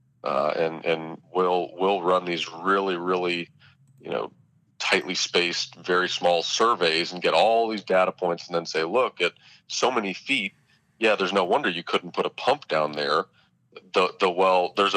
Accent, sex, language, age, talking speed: American, male, English, 30-49, 180 wpm